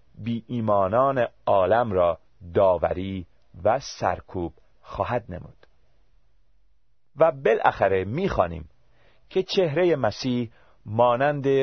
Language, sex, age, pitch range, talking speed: Persian, male, 40-59, 100-150 Hz, 85 wpm